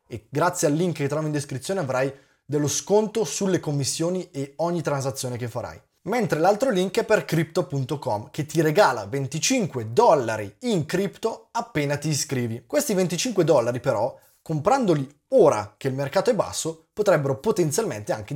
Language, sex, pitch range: Italian, male, 130-175 Hz